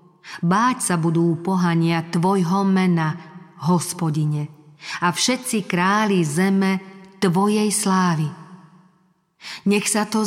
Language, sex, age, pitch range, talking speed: Slovak, female, 40-59, 170-200 Hz, 95 wpm